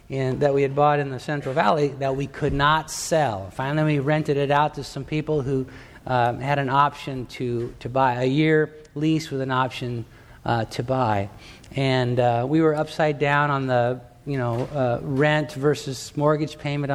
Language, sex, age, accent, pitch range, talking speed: English, male, 50-69, American, 125-150 Hz, 190 wpm